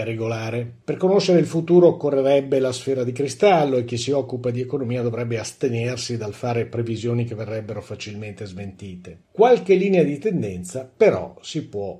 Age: 50-69